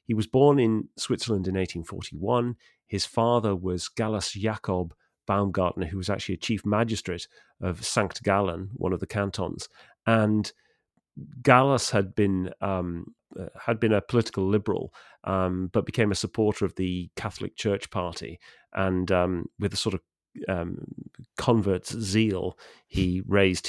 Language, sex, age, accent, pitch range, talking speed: English, male, 40-59, British, 95-110 Hz, 145 wpm